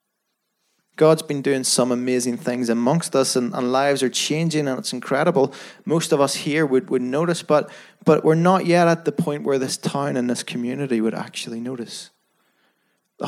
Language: English